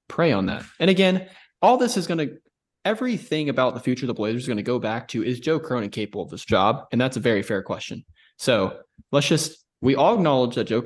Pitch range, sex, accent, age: 110-145 Hz, male, American, 20-39